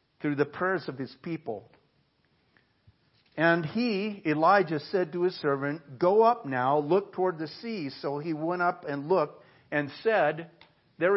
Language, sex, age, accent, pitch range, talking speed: English, male, 50-69, American, 140-185 Hz, 155 wpm